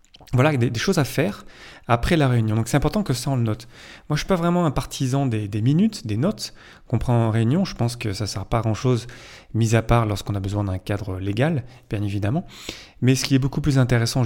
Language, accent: French, French